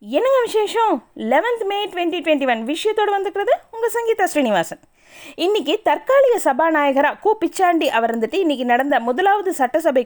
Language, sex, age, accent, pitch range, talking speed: Tamil, female, 20-39, native, 260-365 Hz, 135 wpm